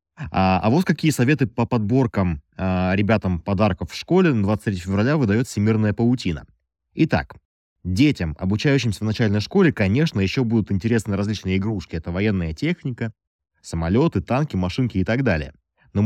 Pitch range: 90-125 Hz